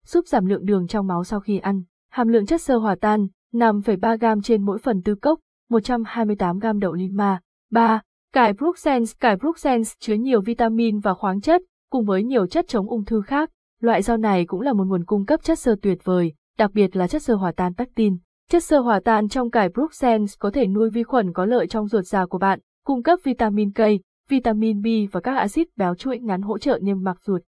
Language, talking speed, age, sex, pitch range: Vietnamese, 220 wpm, 20-39, female, 195-240 Hz